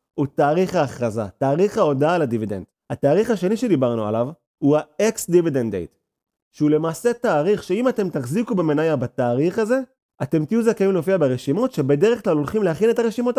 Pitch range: 135-210 Hz